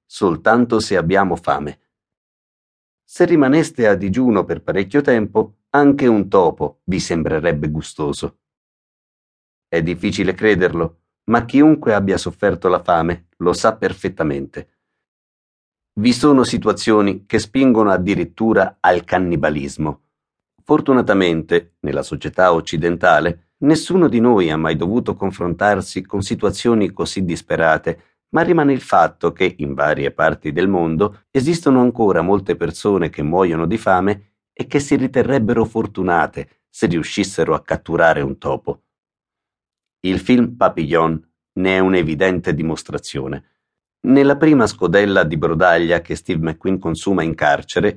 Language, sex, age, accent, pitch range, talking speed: Italian, male, 50-69, native, 85-115 Hz, 125 wpm